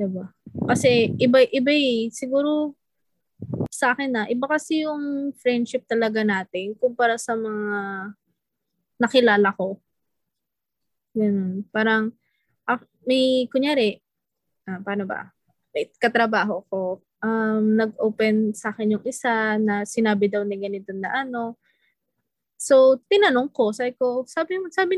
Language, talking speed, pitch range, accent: English, 115 wpm, 210-275 Hz, Filipino